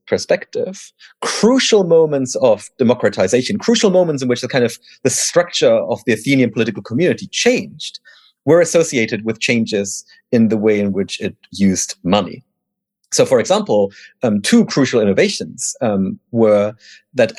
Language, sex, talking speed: English, male, 145 wpm